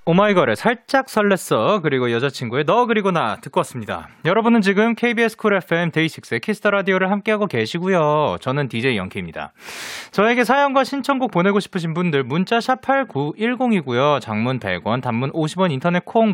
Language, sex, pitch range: Korean, male, 140-215 Hz